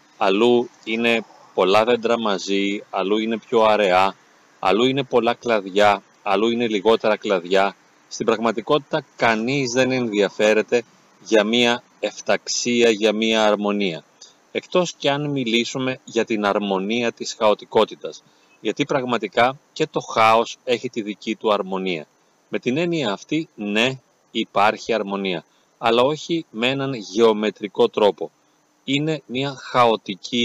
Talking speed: 125 wpm